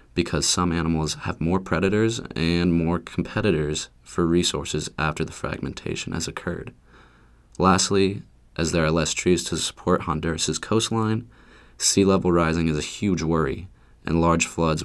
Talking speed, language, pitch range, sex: 145 wpm, English, 80-95 Hz, male